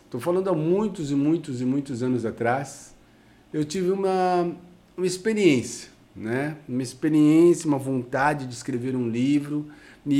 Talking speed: 145 wpm